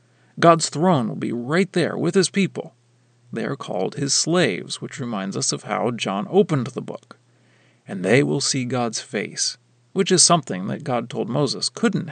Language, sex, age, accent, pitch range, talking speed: English, male, 40-59, American, 120-175 Hz, 185 wpm